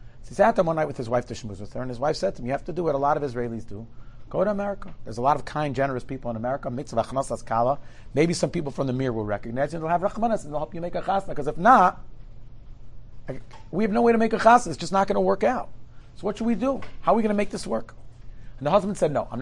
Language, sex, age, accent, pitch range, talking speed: English, male, 40-59, American, 120-190 Hz, 295 wpm